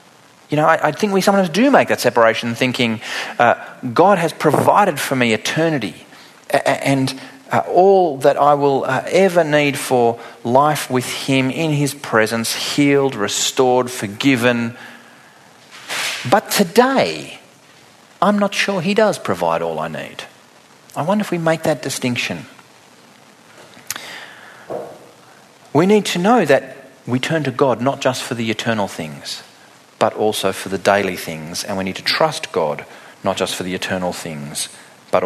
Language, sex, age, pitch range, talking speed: English, male, 40-59, 110-155 Hz, 155 wpm